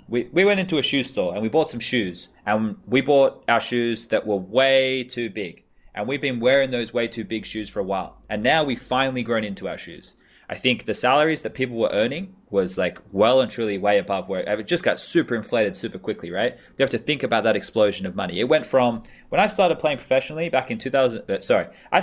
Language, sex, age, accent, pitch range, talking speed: English, male, 20-39, Australian, 110-135 Hz, 240 wpm